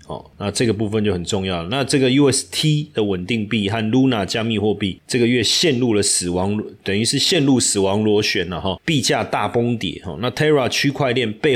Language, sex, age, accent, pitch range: Chinese, male, 30-49, native, 100-125 Hz